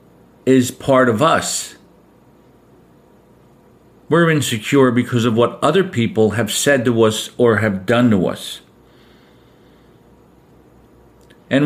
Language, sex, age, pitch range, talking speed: English, male, 50-69, 110-135 Hz, 110 wpm